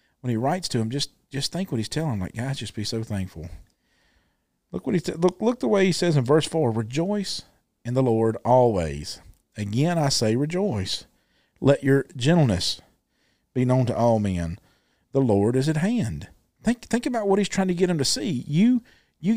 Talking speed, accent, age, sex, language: 200 wpm, American, 40-59, male, English